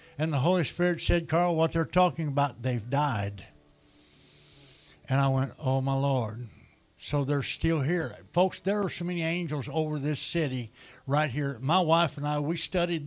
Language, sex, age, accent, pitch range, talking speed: English, male, 60-79, American, 130-165 Hz, 180 wpm